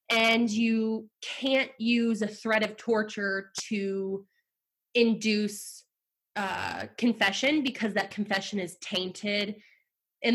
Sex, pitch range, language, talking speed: female, 205-255 Hz, English, 105 wpm